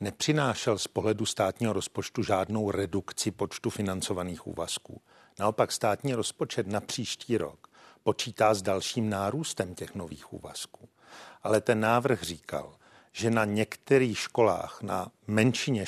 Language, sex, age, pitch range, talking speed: Czech, male, 50-69, 105-120 Hz, 125 wpm